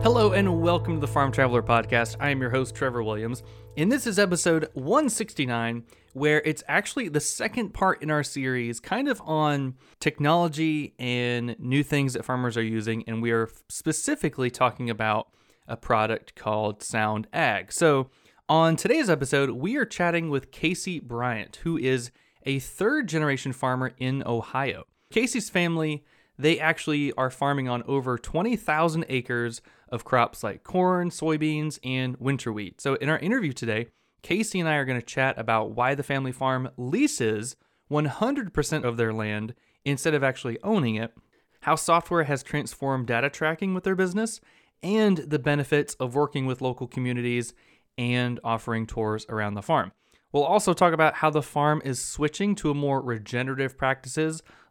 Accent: American